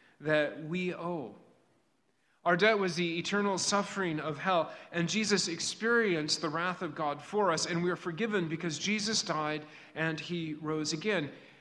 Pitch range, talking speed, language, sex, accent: 170-210 Hz, 160 wpm, English, male, American